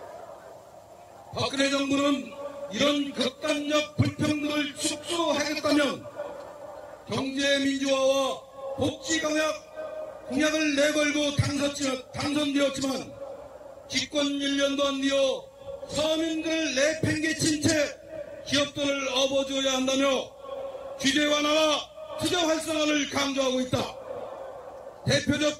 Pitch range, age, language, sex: 280-310 Hz, 40-59, Korean, male